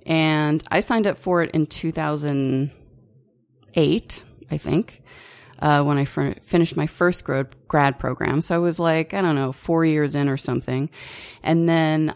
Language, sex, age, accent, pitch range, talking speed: English, female, 30-49, American, 135-165 Hz, 165 wpm